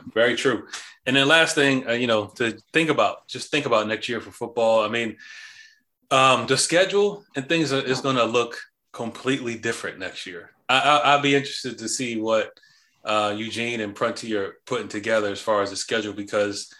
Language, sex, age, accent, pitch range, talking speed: English, male, 30-49, American, 105-130 Hz, 200 wpm